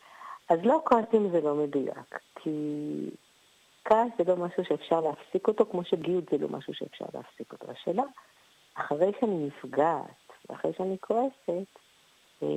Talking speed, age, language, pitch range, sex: 140 wpm, 50-69, Hebrew, 150-195 Hz, female